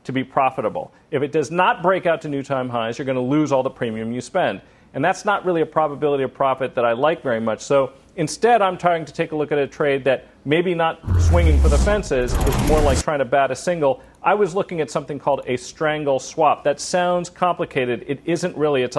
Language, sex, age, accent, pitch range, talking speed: English, male, 40-59, American, 135-170 Hz, 245 wpm